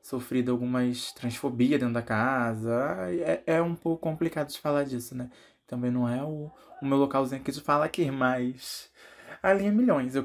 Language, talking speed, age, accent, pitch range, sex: Portuguese, 185 wpm, 20-39, Brazilian, 125-170 Hz, male